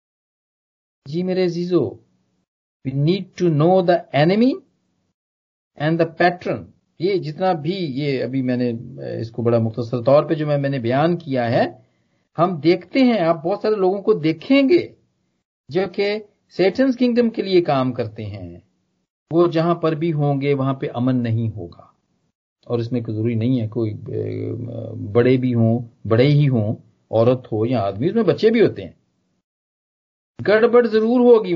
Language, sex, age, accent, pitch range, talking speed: Hindi, male, 50-69, native, 120-185 Hz, 155 wpm